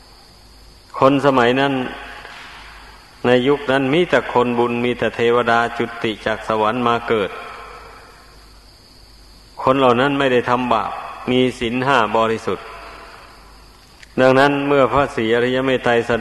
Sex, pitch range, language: male, 115-130 Hz, Thai